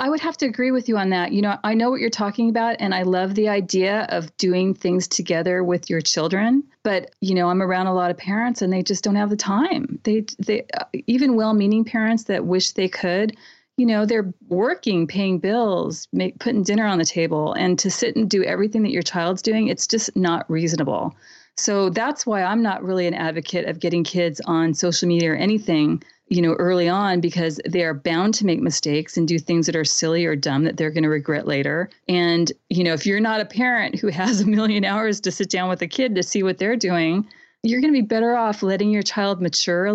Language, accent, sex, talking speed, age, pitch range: English, American, female, 235 wpm, 30-49, 175-220 Hz